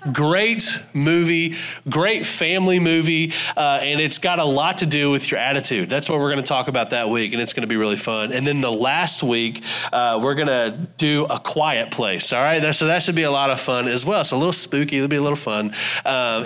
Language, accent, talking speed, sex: English, American, 250 wpm, male